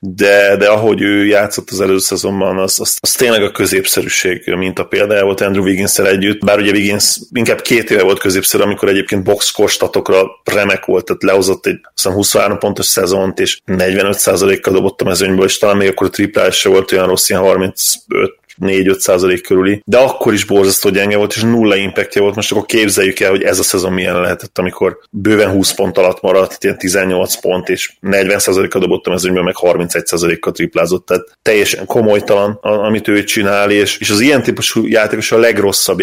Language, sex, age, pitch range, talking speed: Hungarian, male, 30-49, 95-105 Hz, 180 wpm